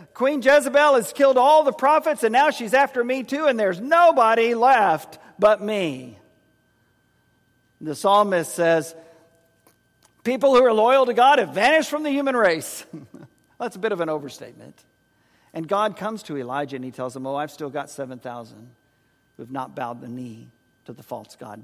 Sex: male